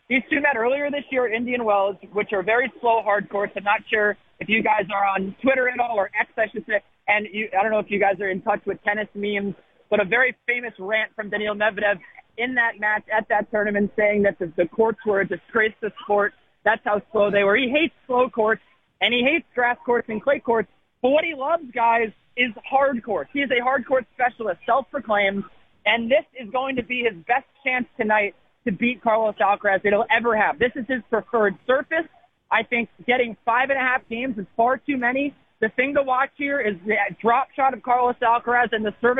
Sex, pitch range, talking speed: male, 210-255 Hz, 230 wpm